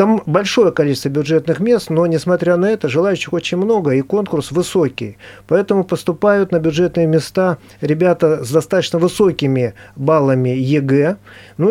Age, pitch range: 40-59, 140-175 Hz